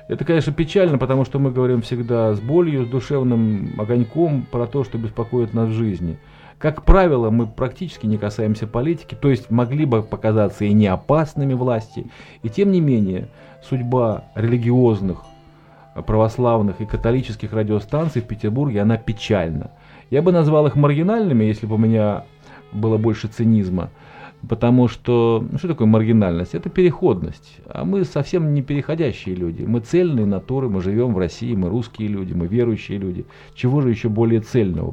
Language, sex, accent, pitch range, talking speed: Russian, male, native, 105-135 Hz, 160 wpm